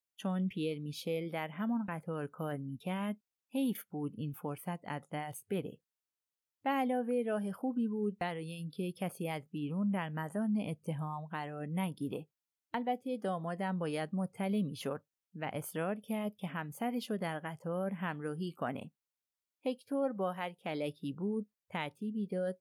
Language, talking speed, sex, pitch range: Persian, 135 wpm, female, 150-200 Hz